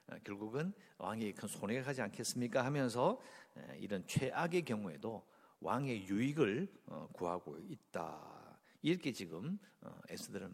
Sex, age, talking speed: male, 60-79, 95 wpm